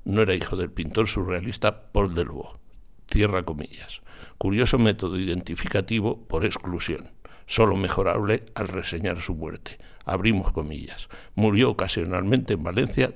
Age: 60-79